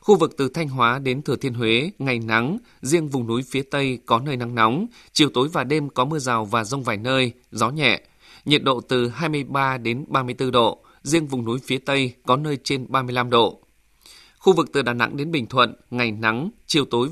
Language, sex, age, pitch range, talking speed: Vietnamese, male, 20-39, 120-145 Hz, 215 wpm